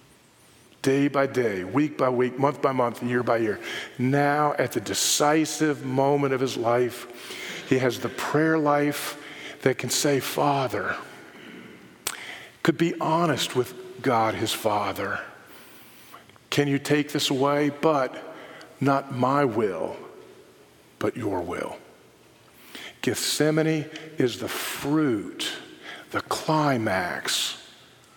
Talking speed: 115 wpm